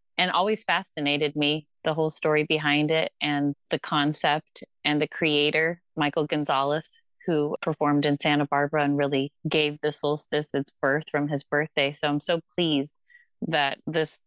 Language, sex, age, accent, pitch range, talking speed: English, female, 30-49, American, 150-165 Hz, 160 wpm